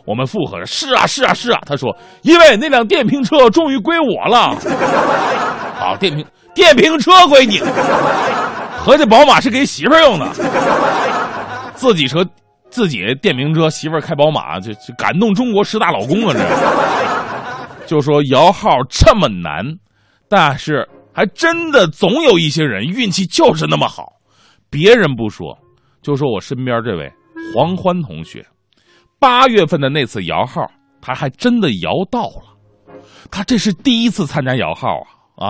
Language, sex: Chinese, male